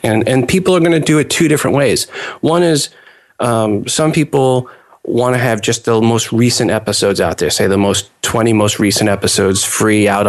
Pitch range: 100-120 Hz